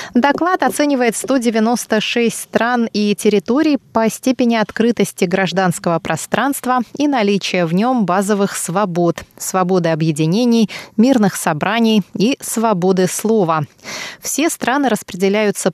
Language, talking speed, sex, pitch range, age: Russian, 105 wpm, female, 180-235 Hz, 20-39